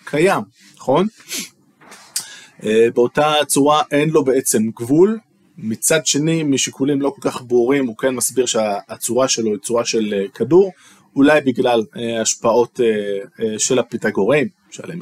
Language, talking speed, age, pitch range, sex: Hebrew, 120 wpm, 20-39, 120-155 Hz, male